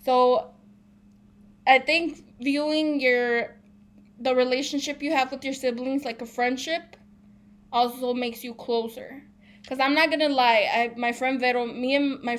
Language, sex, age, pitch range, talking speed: English, female, 20-39, 230-265 Hz, 150 wpm